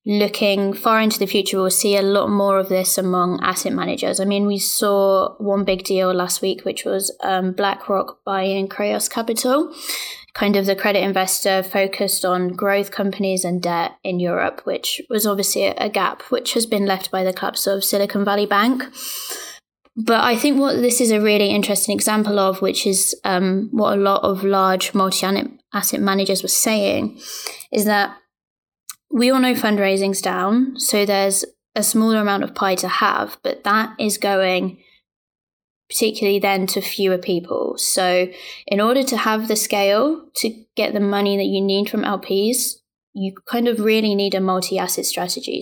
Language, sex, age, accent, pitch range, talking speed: English, female, 20-39, British, 190-220 Hz, 175 wpm